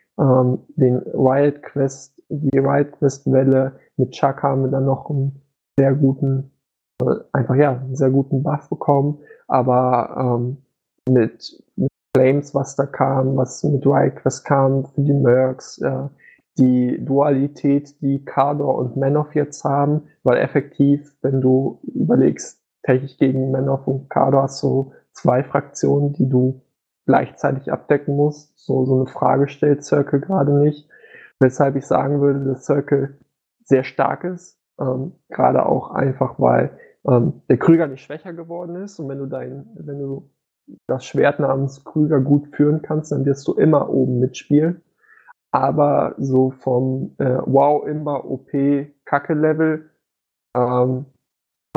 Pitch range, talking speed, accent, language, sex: 130-145 Hz, 145 wpm, German, German, male